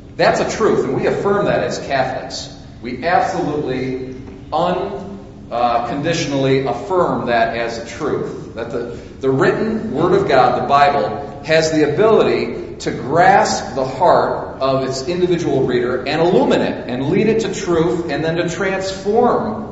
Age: 40-59